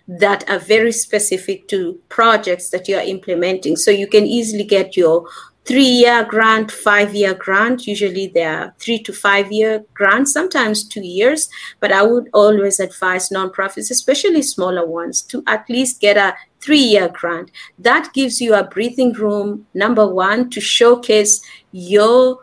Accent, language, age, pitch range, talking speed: South African, English, 30-49, 190-230 Hz, 165 wpm